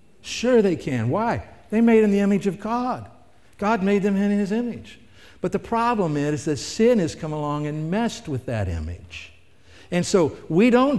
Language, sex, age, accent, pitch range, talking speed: English, male, 60-79, American, 120-200 Hz, 195 wpm